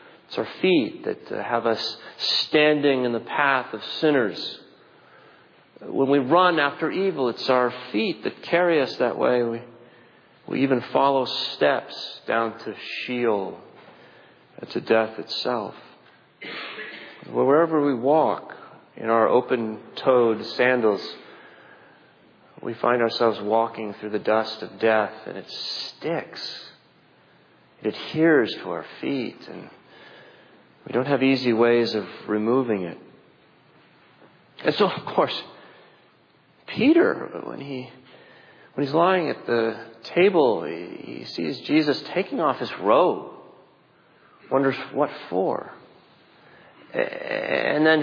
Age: 40-59